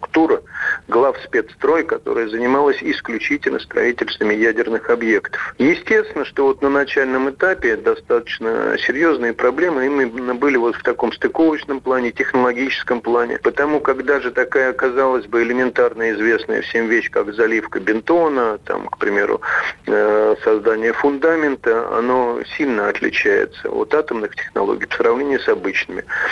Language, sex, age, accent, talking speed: Russian, male, 50-69, native, 125 wpm